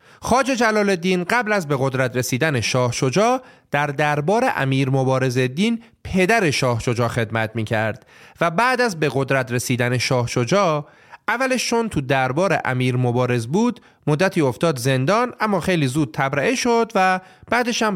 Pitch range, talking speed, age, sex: 120-185 Hz, 150 wpm, 30-49, male